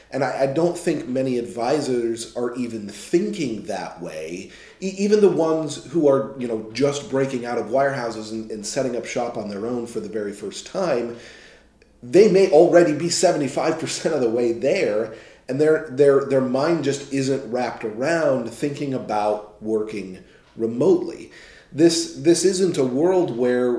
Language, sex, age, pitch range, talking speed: English, male, 30-49, 120-150 Hz, 165 wpm